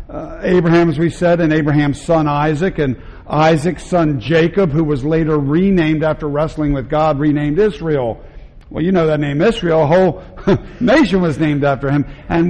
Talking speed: 180 wpm